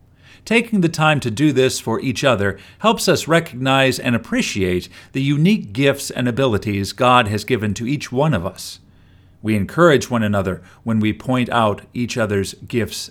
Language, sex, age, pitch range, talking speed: English, male, 50-69, 95-145 Hz, 175 wpm